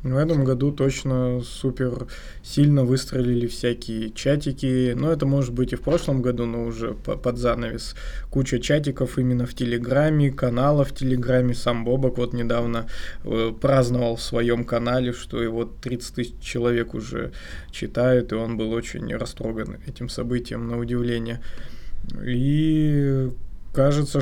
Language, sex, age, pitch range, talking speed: Russian, male, 20-39, 115-130 Hz, 140 wpm